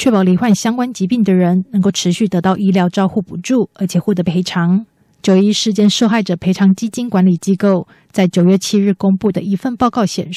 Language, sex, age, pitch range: Chinese, female, 20-39, 185-215 Hz